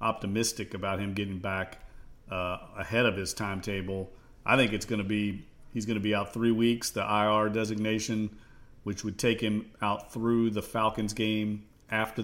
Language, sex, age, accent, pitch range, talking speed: English, male, 40-59, American, 105-120 Hz, 175 wpm